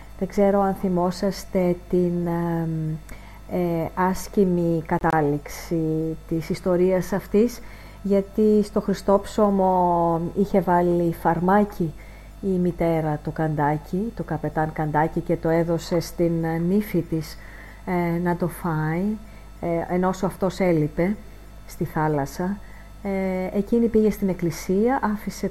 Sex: female